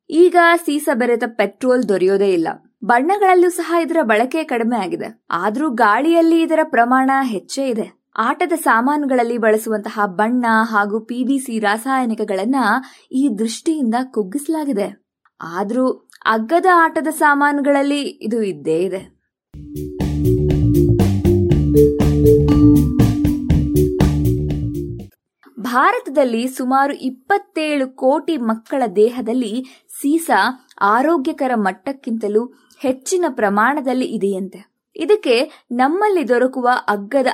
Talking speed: 80 wpm